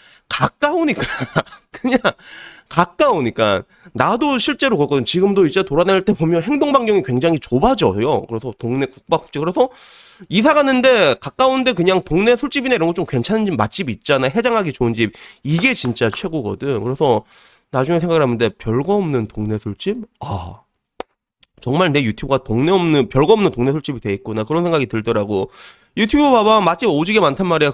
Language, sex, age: Korean, male, 30-49